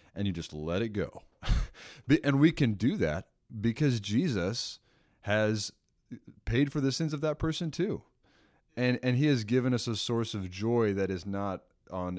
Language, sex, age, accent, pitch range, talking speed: English, male, 30-49, American, 90-115 Hz, 175 wpm